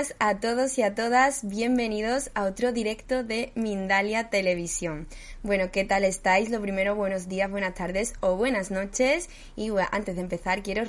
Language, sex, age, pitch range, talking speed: Spanish, female, 20-39, 190-245 Hz, 165 wpm